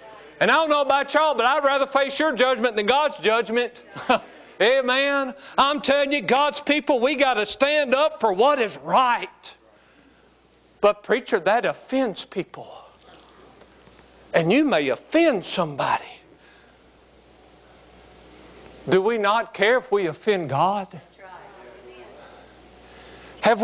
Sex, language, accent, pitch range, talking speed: male, English, American, 215-295 Hz, 125 wpm